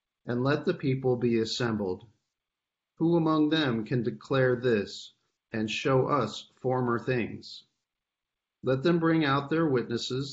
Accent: American